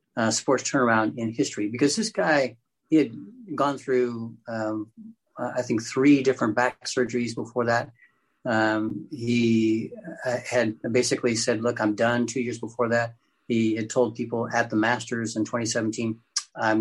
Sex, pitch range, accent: male, 110-130 Hz, American